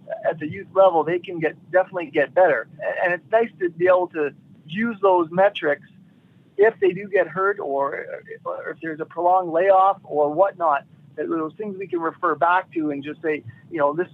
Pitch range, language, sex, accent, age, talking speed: 160-205 Hz, English, male, American, 40-59, 200 wpm